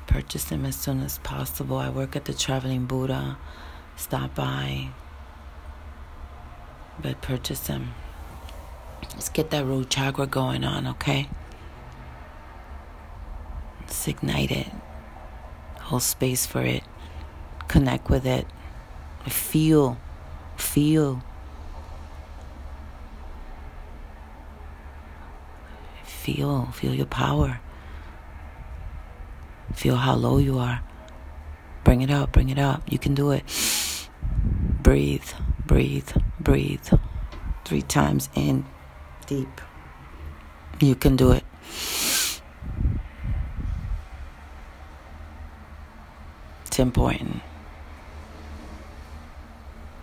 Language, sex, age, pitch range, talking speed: English, female, 40-59, 70-85 Hz, 85 wpm